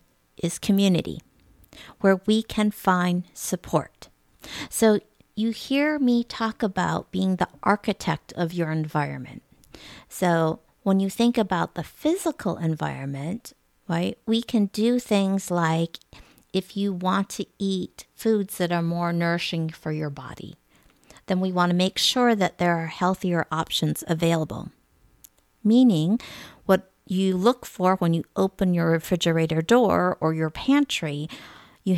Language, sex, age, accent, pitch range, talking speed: English, female, 50-69, American, 165-215 Hz, 135 wpm